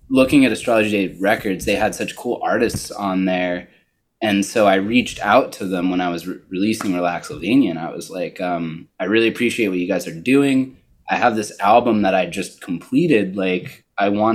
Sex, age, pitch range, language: male, 20-39, 95-115 Hz, English